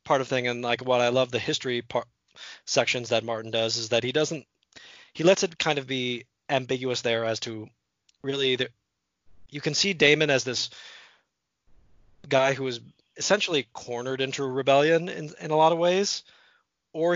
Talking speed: 180 wpm